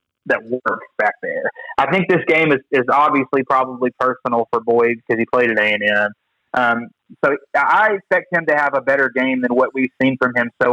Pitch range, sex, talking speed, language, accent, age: 120-150 Hz, male, 205 wpm, English, American, 30-49